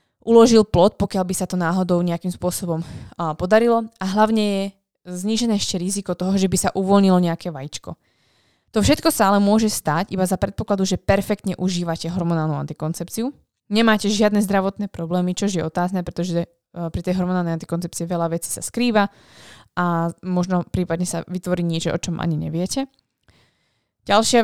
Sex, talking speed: female, 155 wpm